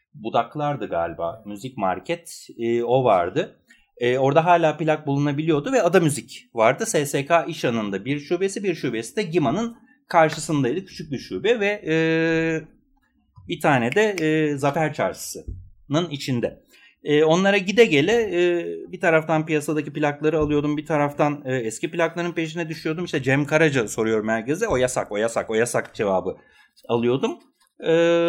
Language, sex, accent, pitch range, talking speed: Turkish, male, native, 135-185 Hz, 145 wpm